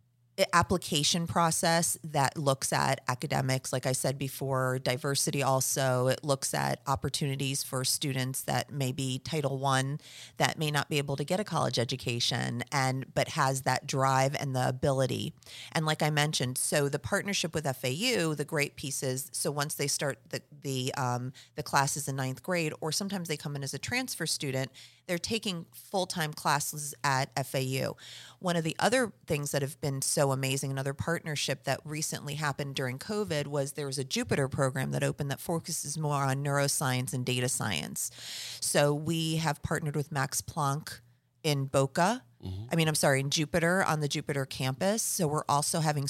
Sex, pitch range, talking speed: female, 135-160 Hz, 175 wpm